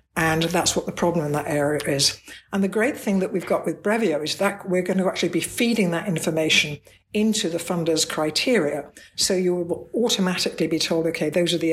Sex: female